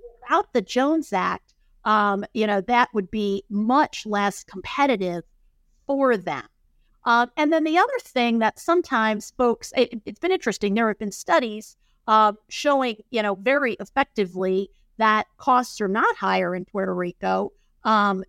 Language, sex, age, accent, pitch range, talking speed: English, female, 50-69, American, 205-290 Hz, 150 wpm